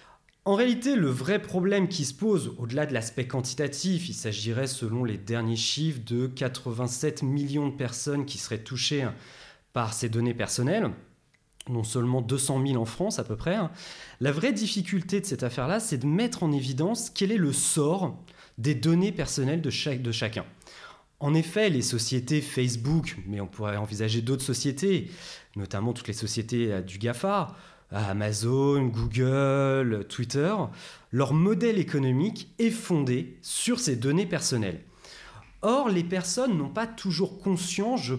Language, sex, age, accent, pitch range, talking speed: French, male, 30-49, French, 120-180 Hz, 150 wpm